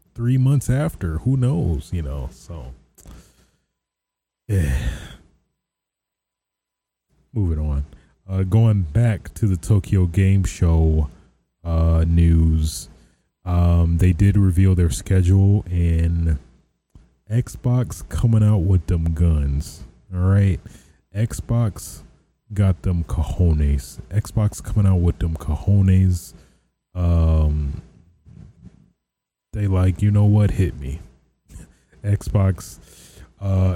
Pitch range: 80-95 Hz